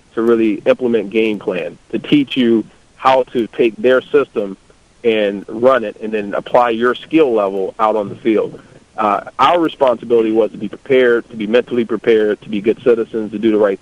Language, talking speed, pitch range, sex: English, 195 wpm, 105-130 Hz, male